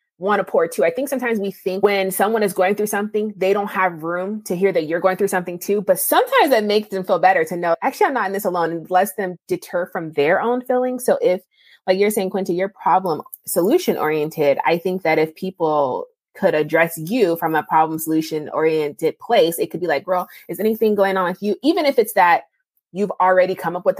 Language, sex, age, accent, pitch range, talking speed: English, female, 20-39, American, 160-205 Hz, 235 wpm